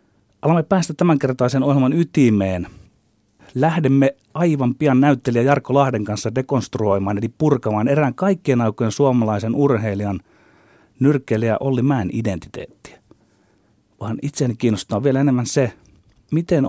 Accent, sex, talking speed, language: native, male, 110 wpm, Finnish